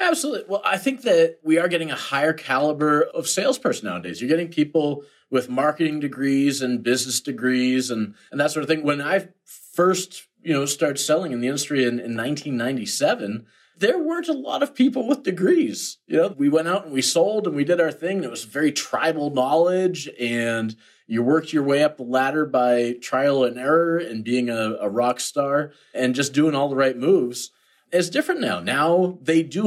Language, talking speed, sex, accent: English, 200 wpm, male, American